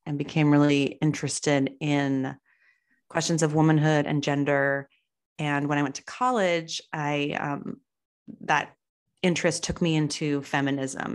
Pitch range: 145-165 Hz